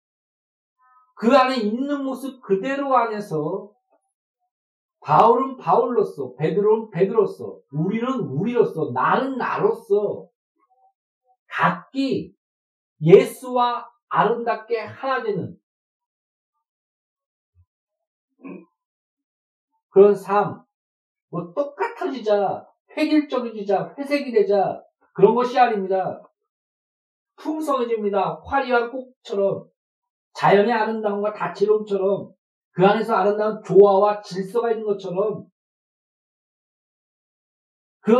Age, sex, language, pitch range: 50-69, male, Korean, 200-285 Hz